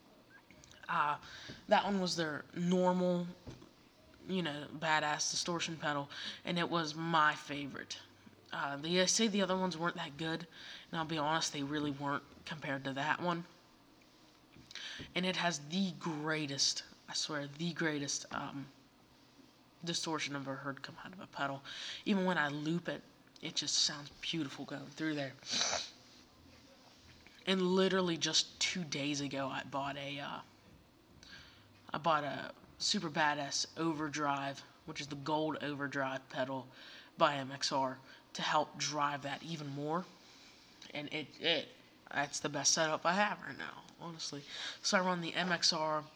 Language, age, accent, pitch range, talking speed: English, 20-39, American, 140-170 Hz, 150 wpm